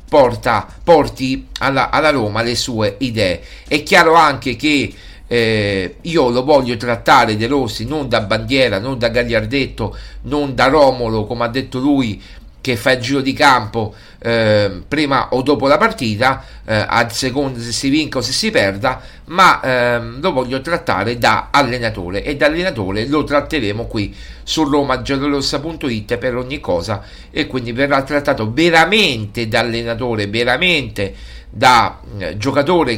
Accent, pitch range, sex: native, 115-145 Hz, male